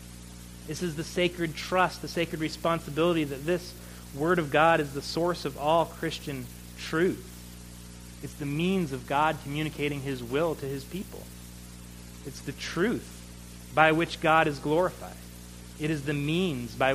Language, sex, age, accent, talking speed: English, male, 30-49, American, 155 wpm